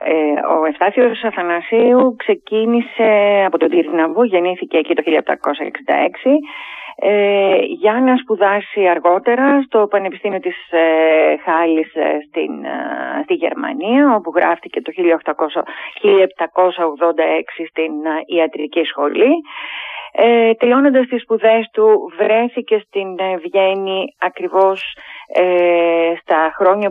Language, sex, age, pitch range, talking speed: Greek, female, 30-49, 165-230 Hz, 85 wpm